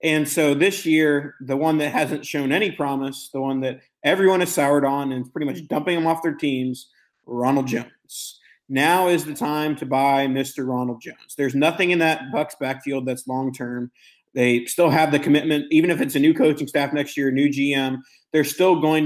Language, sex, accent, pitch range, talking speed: English, male, American, 130-150 Hz, 200 wpm